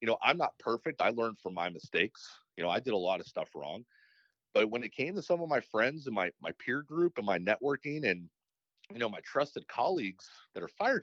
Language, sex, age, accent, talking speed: English, male, 40-59, American, 245 wpm